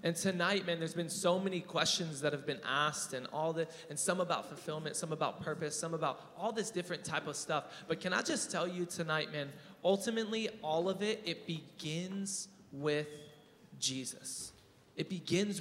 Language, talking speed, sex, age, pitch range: English, 185 wpm, male, 20-39, 150-190 Hz